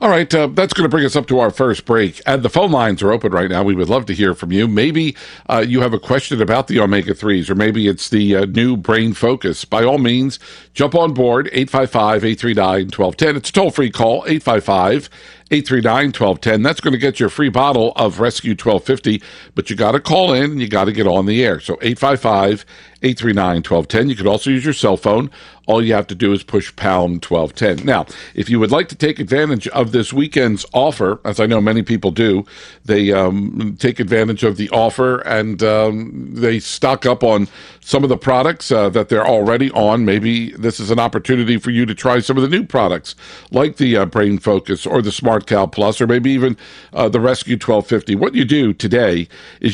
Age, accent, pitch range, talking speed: 60-79, American, 105-135 Hz, 215 wpm